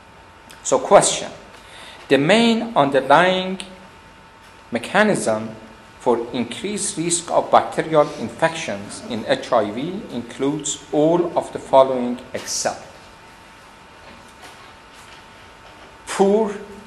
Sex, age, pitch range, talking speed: male, 50-69, 110-160 Hz, 75 wpm